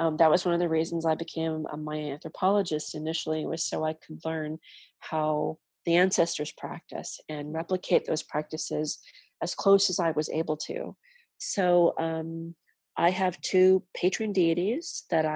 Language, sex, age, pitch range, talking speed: English, female, 30-49, 155-180 Hz, 160 wpm